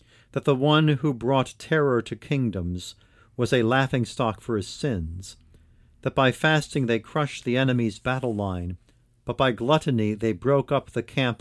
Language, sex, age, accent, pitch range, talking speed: English, male, 50-69, American, 105-135 Hz, 165 wpm